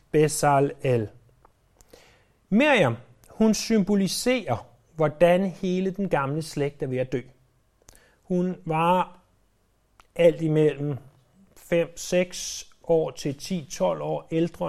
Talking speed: 95 wpm